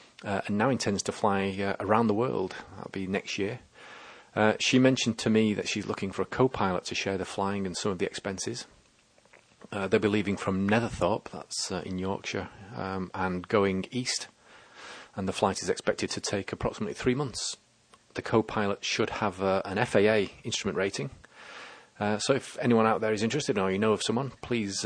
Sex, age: male, 40-59